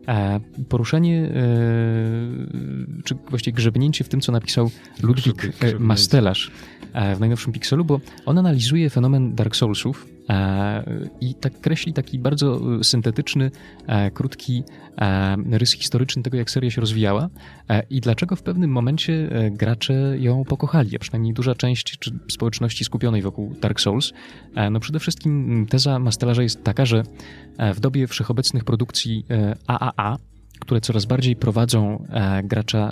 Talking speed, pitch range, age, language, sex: 125 wpm, 110-135 Hz, 20-39, Polish, male